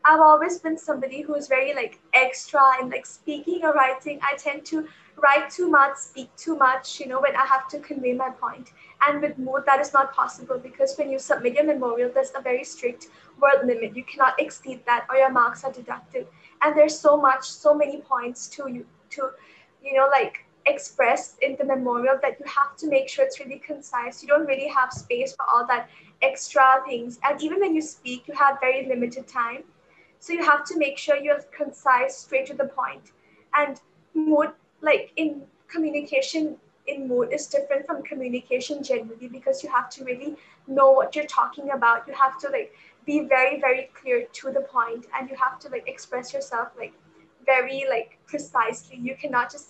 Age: 20-39